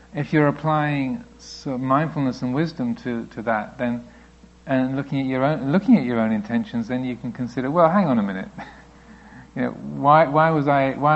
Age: 50-69